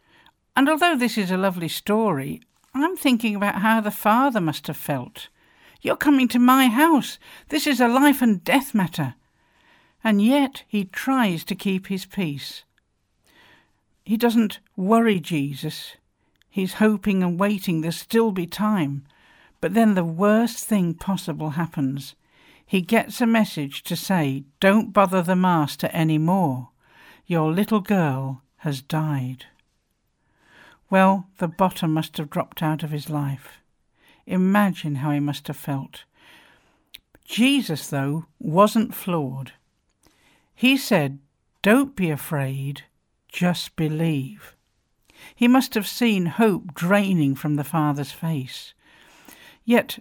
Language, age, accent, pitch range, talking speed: English, 60-79, British, 155-220 Hz, 130 wpm